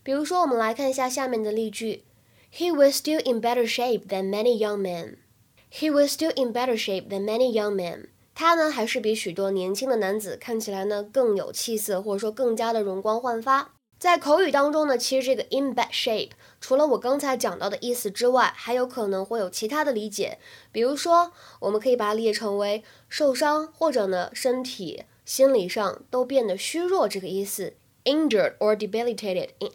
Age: 10-29